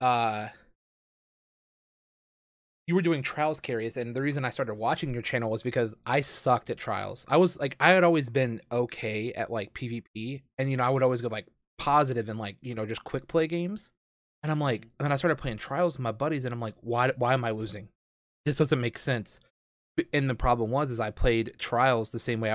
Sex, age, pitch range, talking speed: male, 20-39, 115-140 Hz, 220 wpm